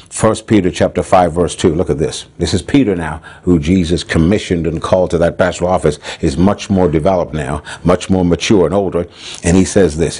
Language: English